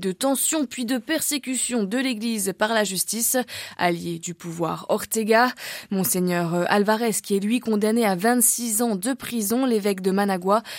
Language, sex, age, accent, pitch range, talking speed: French, female, 20-39, French, 190-235 Hz, 155 wpm